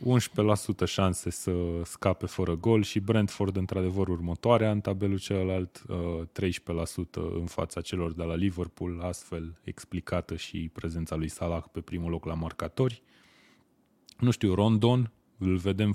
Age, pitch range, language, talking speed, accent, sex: 20-39, 85-105 Hz, Romanian, 130 wpm, native, male